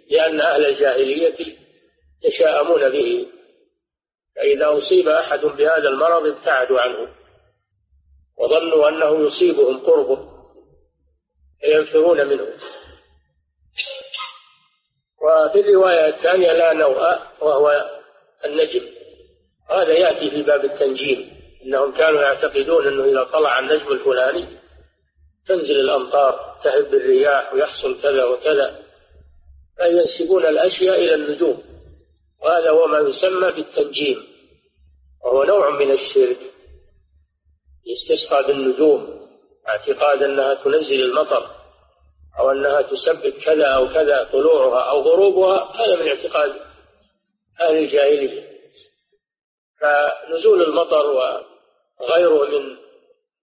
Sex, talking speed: male, 90 wpm